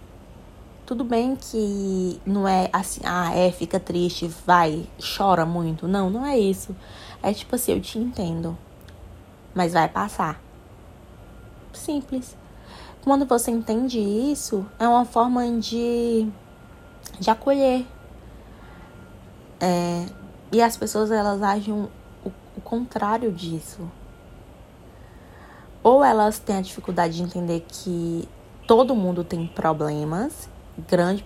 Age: 20-39